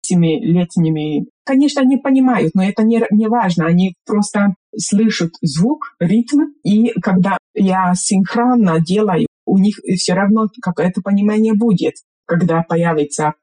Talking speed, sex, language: 125 wpm, female, Russian